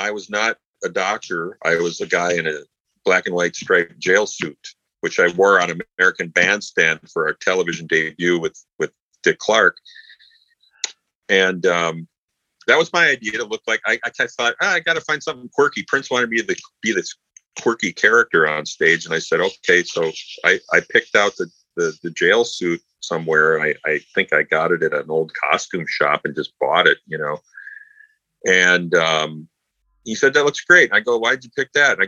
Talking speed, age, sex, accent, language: 200 wpm, 40-59, male, American, English